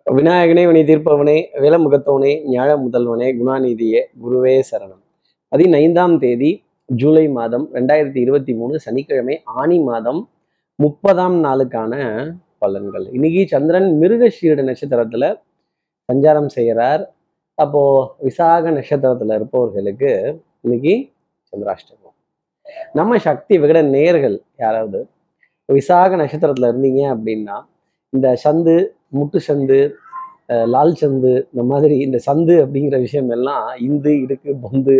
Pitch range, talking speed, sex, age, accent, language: 130-165 Hz, 100 wpm, male, 30-49, native, Tamil